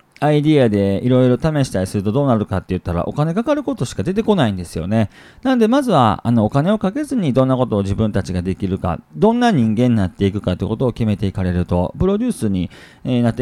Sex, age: male, 40-59